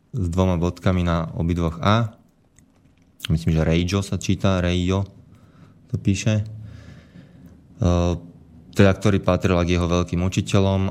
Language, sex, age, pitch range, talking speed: Slovak, male, 20-39, 85-95 Hz, 115 wpm